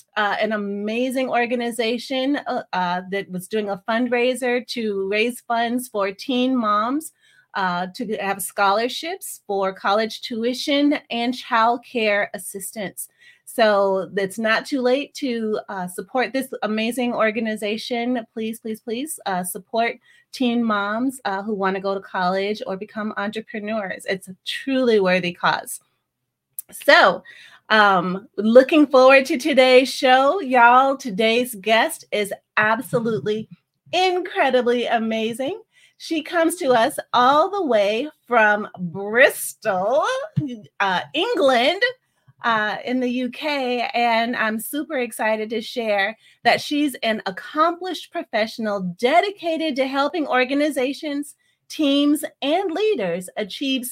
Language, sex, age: English, female, 30-49